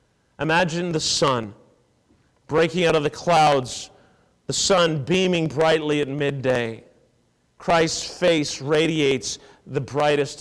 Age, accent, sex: 40-59, American, male